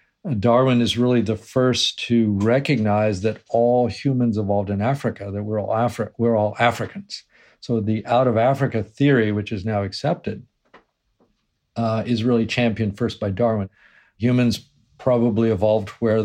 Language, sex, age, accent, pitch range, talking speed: English, male, 50-69, American, 105-125 Hz, 150 wpm